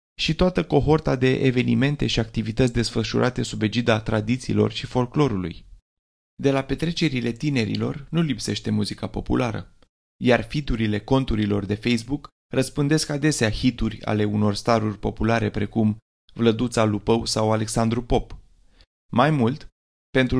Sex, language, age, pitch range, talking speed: male, Romanian, 20-39, 110-130 Hz, 125 wpm